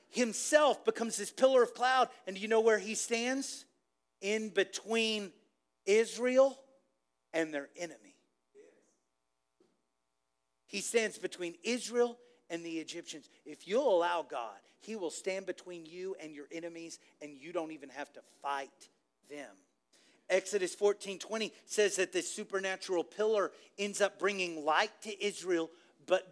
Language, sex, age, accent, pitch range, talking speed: English, male, 40-59, American, 165-230 Hz, 135 wpm